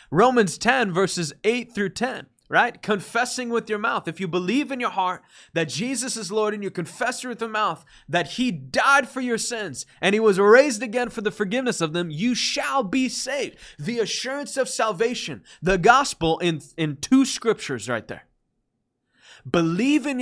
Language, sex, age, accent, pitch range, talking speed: English, male, 20-39, American, 155-230 Hz, 180 wpm